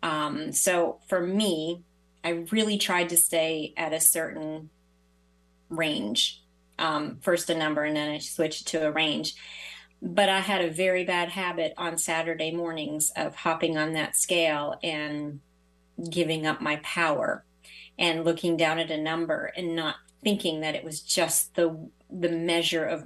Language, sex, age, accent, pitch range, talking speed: English, female, 30-49, American, 150-180 Hz, 160 wpm